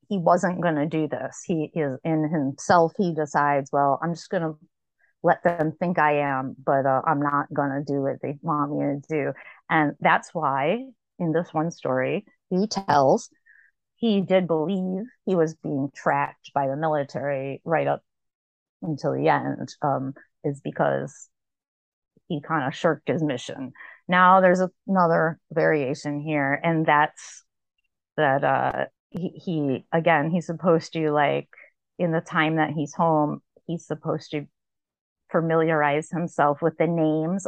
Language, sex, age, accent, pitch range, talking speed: English, female, 30-49, American, 145-180 Hz, 150 wpm